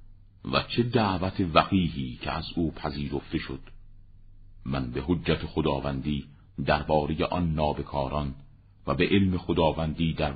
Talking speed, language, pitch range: 120 wpm, Persian, 75-100 Hz